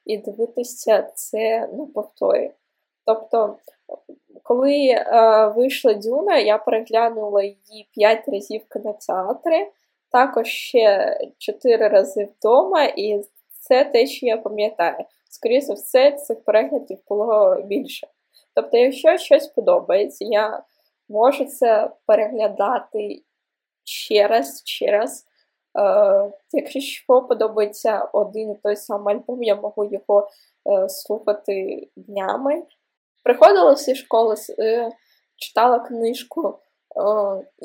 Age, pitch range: 10-29, 210-280 Hz